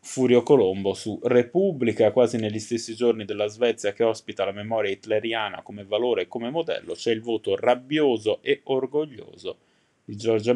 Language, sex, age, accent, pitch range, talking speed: Italian, male, 20-39, native, 105-130 Hz, 160 wpm